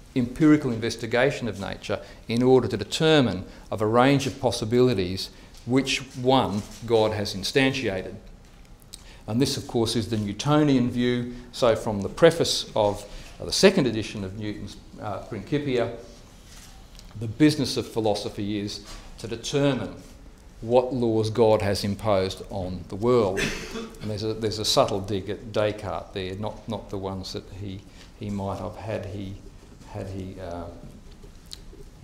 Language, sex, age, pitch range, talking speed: English, male, 50-69, 100-125 Hz, 145 wpm